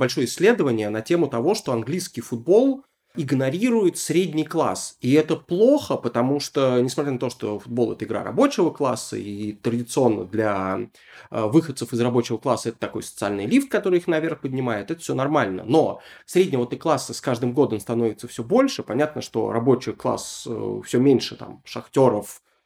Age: 20-39